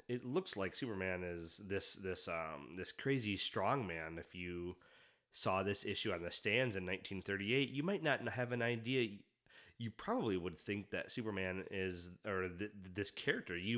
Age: 30-49